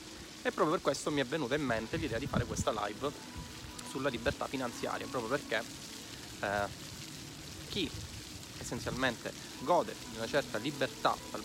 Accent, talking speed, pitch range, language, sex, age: native, 145 wpm, 115-145 Hz, Italian, male, 30-49